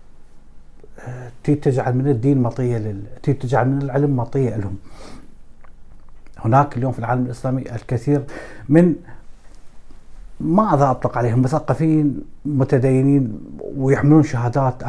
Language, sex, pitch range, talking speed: Arabic, male, 115-140 Hz, 95 wpm